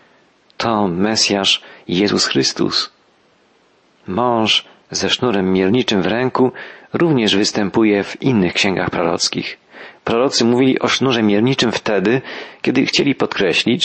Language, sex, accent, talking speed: Polish, male, native, 110 wpm